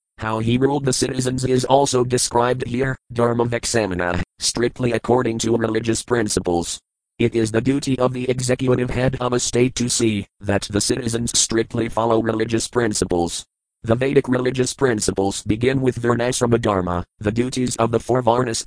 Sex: male